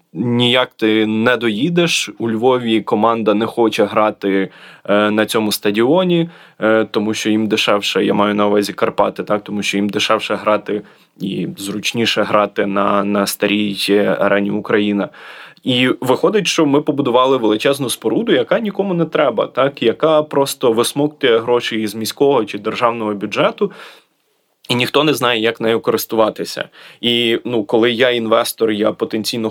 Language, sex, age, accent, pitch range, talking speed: Ukrainian, male, 20-39, native, 105-125 Hz, 145 wpm